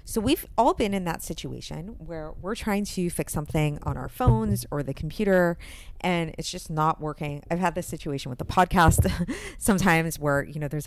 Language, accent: English, American